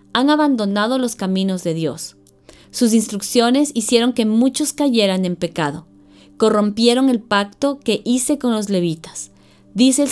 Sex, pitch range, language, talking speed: female, 190-245 Hz, Spanish, 140 wpm